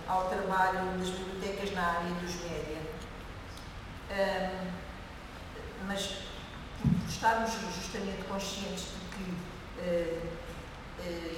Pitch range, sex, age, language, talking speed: 170-200 Hz, female, 50-69, Portuguese, 95 wpm